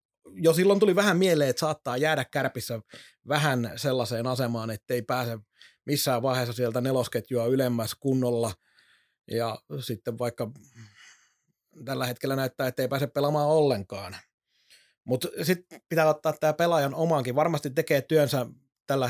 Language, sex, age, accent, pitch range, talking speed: Finnish, male, 30-49, native, 120-145 Hz, 135 wpm